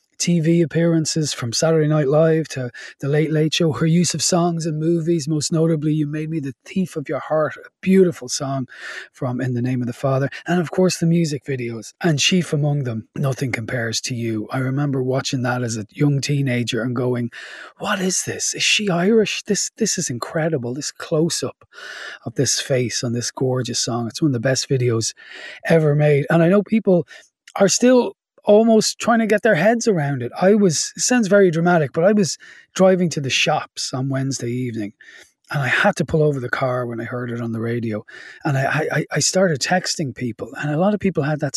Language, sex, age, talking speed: English, male, 30-49, 215 wpm